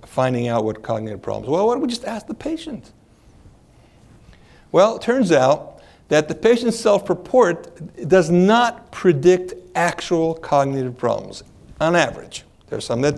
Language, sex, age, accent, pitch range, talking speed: English, male, 60-79, American, 130-185 Hz, 150 wpm